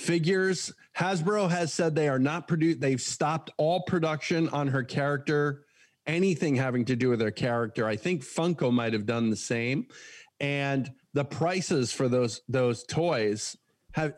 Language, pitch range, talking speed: English, 125-175 Hz, 160 wpm